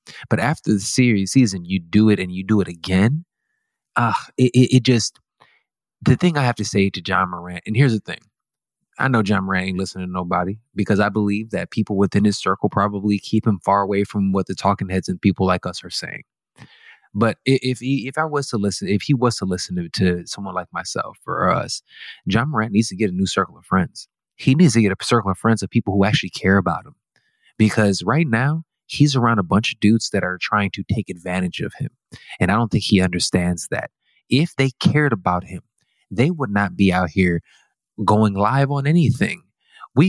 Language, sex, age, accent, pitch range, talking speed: English, male, 20-39, American, 95-130 Hz, 220 wpm